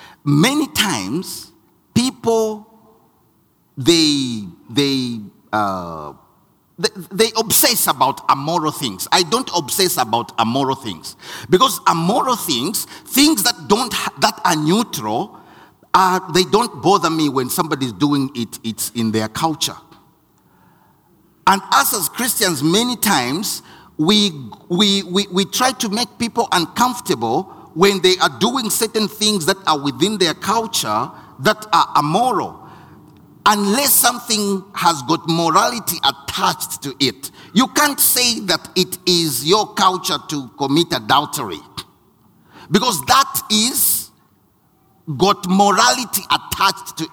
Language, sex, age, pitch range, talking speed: English, male, 50-69, 150-225 Hz, 120 wpm